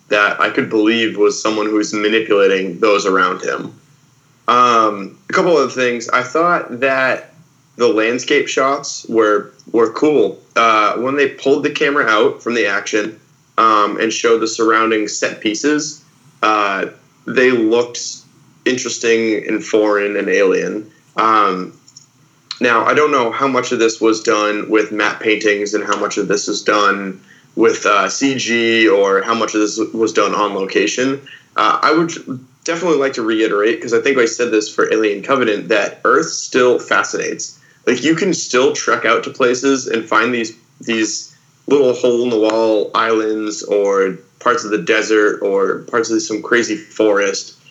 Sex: male